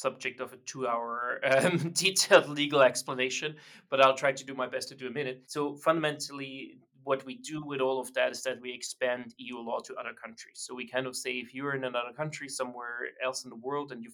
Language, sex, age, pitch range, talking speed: English, male, 30-49, 120-135 Hz, 225 wpm